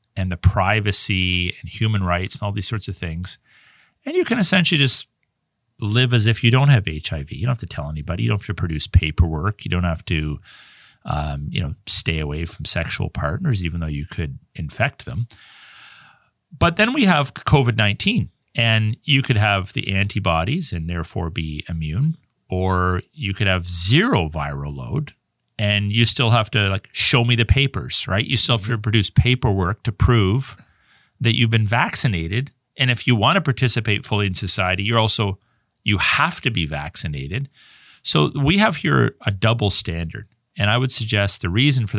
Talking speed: 185 wpm